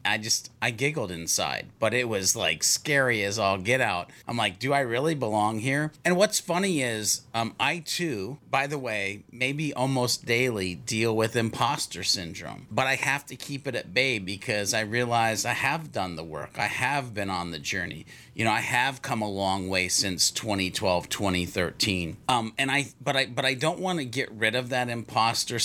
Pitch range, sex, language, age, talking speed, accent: 105-135 Hz, male, English, 30-49, 200 wpm, American